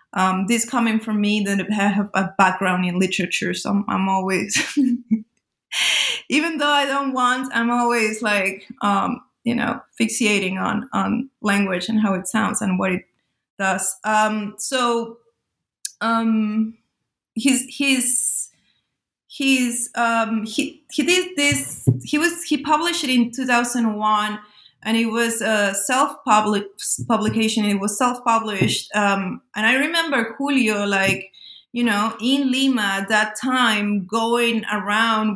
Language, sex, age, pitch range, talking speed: English, female, 20-39, 205-250 Hz, 140 wpm